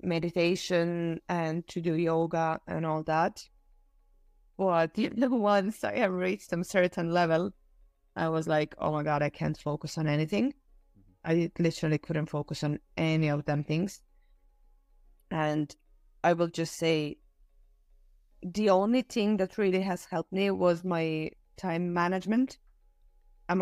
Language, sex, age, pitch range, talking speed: English, female, 20-39, 155-175 Hz, 135 wpm